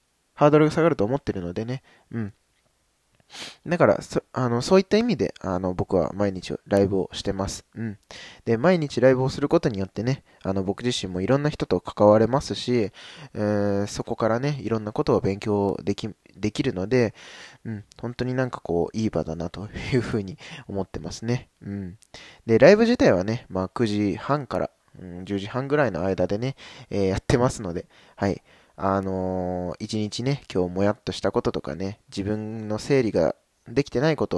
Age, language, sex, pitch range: 20-39, Japanese, male, 100-130 Hz